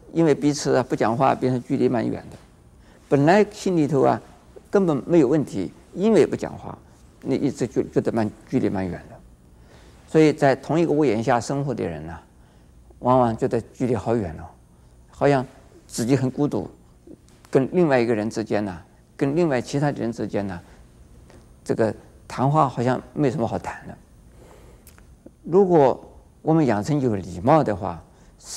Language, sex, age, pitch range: Chinese, male, 50-69, 90-150 Hz